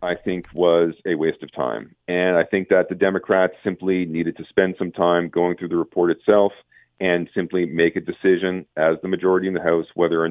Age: 40-59